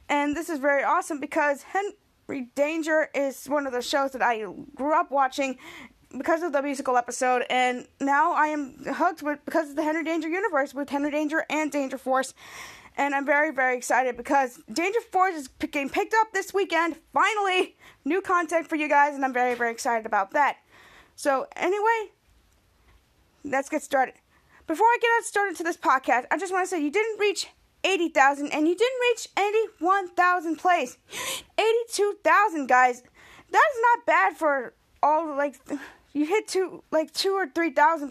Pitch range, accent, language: 275-350 Hz, American, English